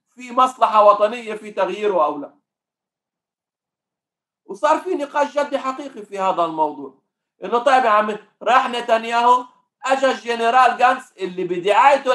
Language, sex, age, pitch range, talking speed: Arabic, male, 50-69, 190-260 Hz, 125 wpm